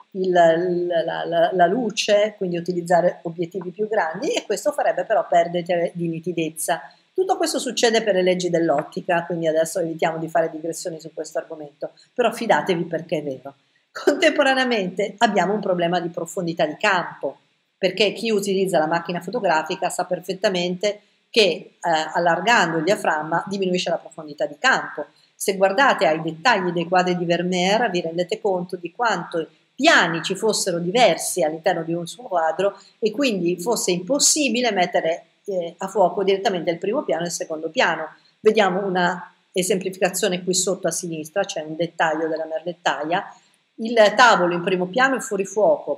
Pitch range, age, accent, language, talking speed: 170-215 Hz, 50-69, native, Italian, 155 wpm